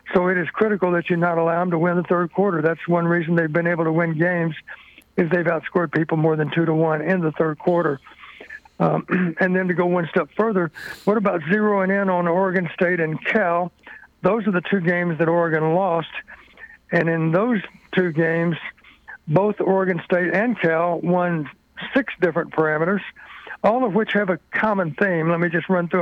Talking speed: 200 wpm